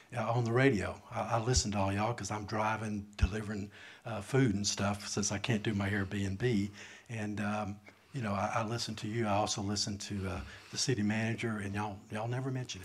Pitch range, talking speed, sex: 100-115 Hz, 215 wpm, male